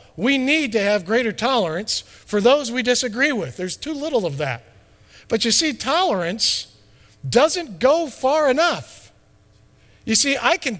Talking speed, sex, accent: 155 wpm, male, American